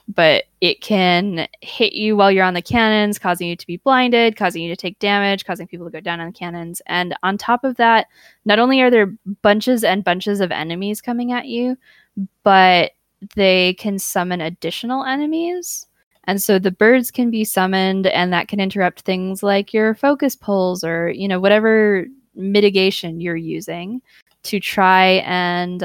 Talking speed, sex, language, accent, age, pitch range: 180 wpm, female, English, American, 10-29, 170-215 Hz